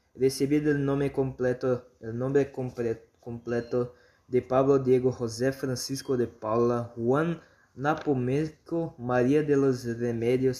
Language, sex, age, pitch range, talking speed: Spanish, male, 20-39, 120-140 Hz, 120 wpm